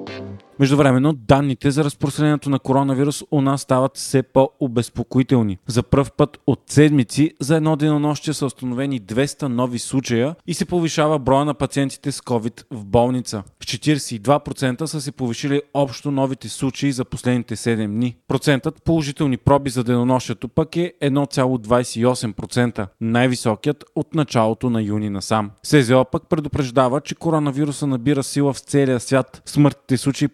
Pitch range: 120-150 Hz